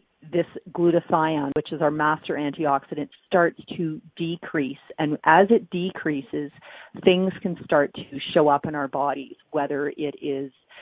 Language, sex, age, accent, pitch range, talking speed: English, female, 40-59, American, 140-170 Hz, 145 wpm